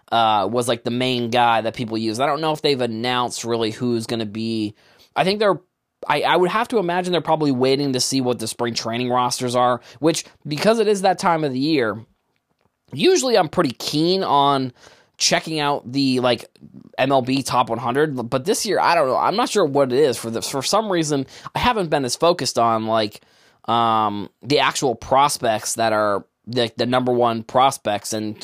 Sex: male